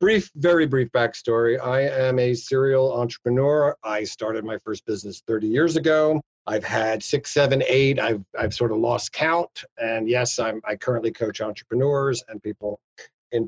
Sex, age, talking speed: male, 50-69, 170 wpm